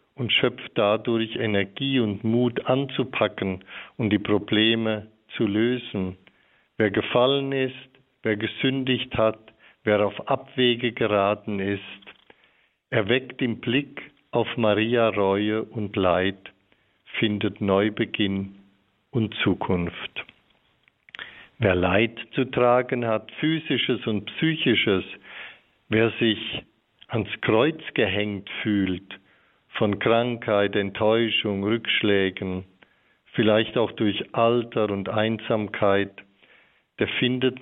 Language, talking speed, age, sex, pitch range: German, 95 wpm, 50-69, male, 100-120 Hz